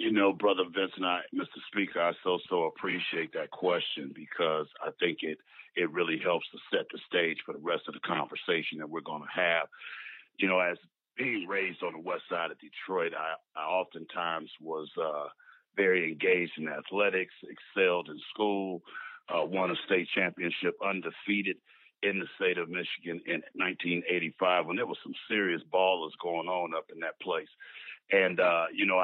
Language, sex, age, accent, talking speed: English, male, 50-69, American, 180 wpm